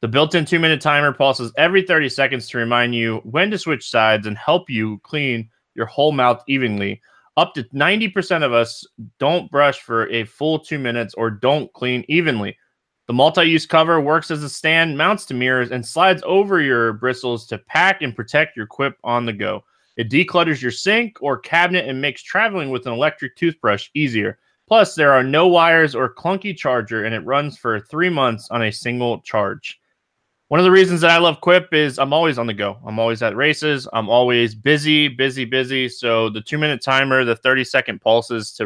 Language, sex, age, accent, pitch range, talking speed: English, male, 20-39, American, 115-155 Hz, 195 wpm